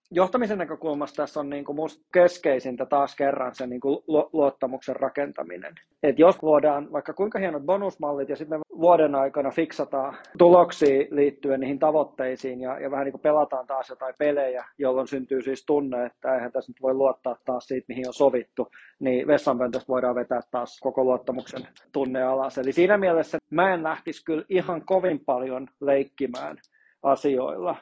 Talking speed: 160 wpm